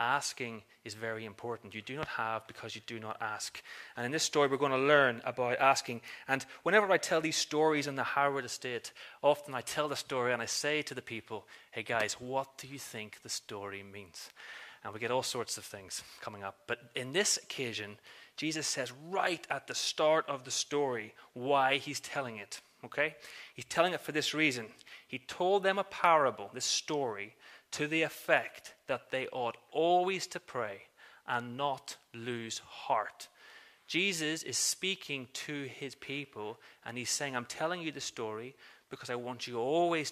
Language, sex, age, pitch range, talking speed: English, male, 30-49, 120-155 Hz, 185 wpm